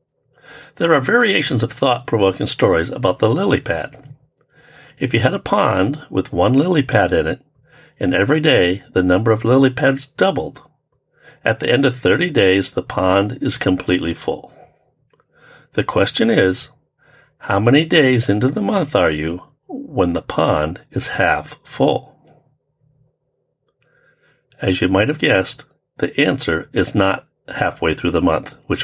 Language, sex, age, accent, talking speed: English, male, 60-79, American, 150 wpm